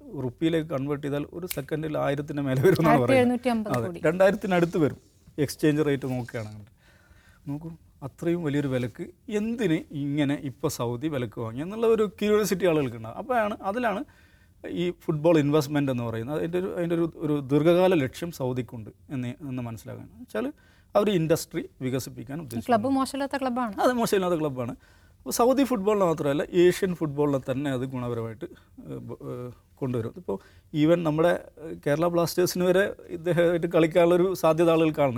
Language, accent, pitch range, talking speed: English, Indian, 135-175 Hz, 60 wpm